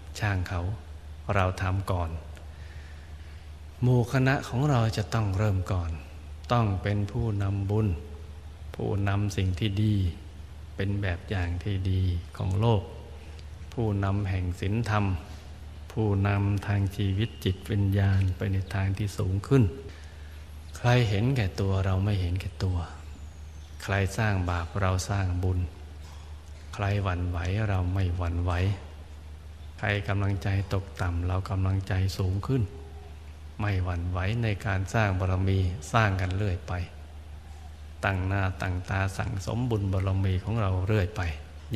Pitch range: 80-100 Hz